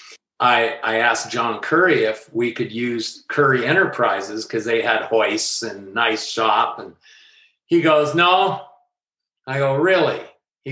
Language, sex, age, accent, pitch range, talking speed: English, male, 50-69, American, 125-160 Hz, 145 wpm